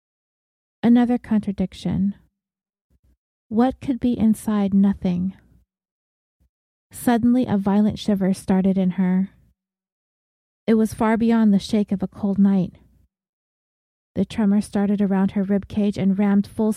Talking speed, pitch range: 120 wpm, 185-210 Hz